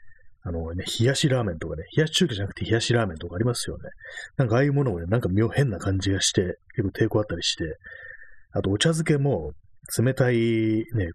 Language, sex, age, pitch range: Japanese, male, 30-49, 90-125 Hz